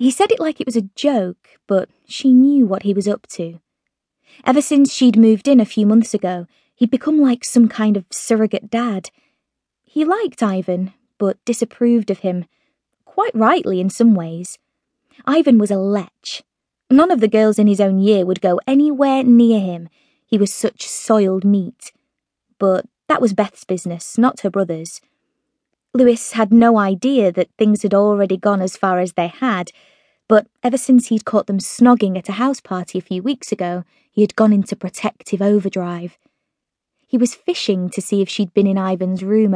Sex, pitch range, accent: female, 190-255 Hz, British